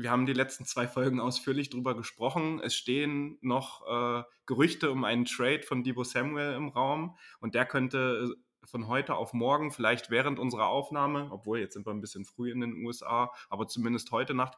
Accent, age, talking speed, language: German, 20-39, 195 wpm, German